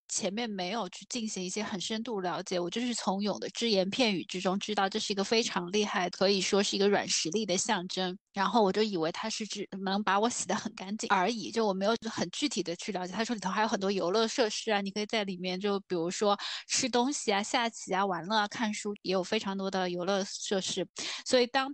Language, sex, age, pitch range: Chinese, female, 20-39, 190-225 Hz